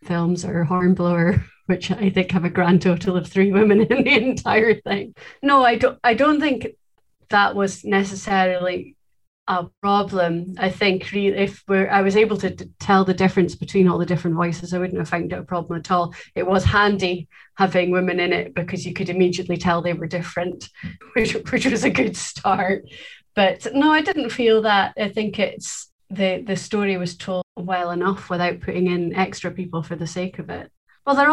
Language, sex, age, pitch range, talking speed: English, female, 30-49, 180-215 Hz, 200 wpm